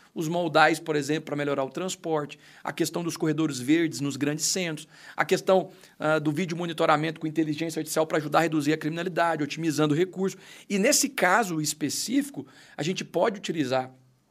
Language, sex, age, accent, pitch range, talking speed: Portuguese, male, 40-59, Brazilian, 155-215 Hz, 175 wpm